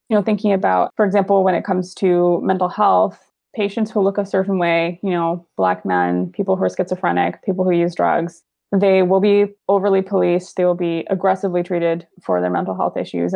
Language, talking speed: English, 200 wpm